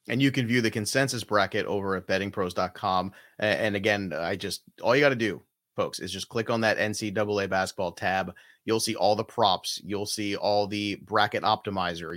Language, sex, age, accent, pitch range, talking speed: English, male, 30-49, American, 105-140 Hz, 190 wpm